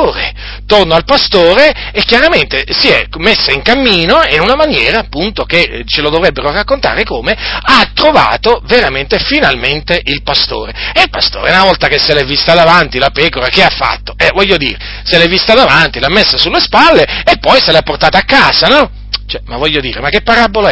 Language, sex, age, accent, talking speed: Italian, male, 40-59, native, 195 wpm